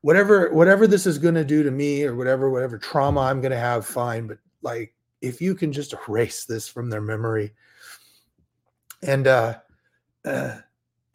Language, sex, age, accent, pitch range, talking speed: English, male, 30-49, American, 120-155 Hz, 170 wpm